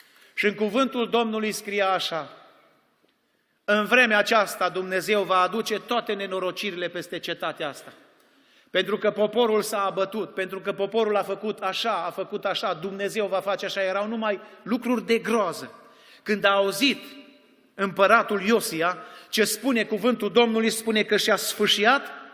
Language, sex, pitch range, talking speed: Romanian, male, 205-250 Hz, 140 wpm